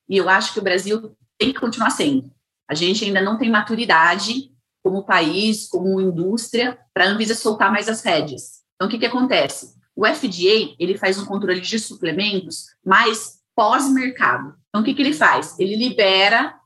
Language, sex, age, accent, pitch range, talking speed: Portuguese, female, 30-49, Brazilian, 180-230 Hz, 175 wpm